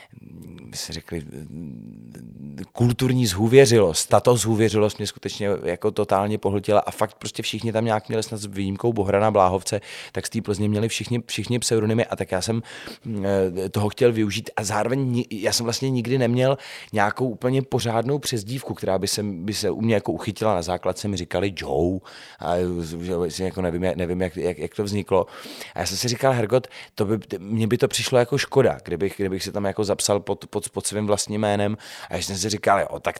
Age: 30-49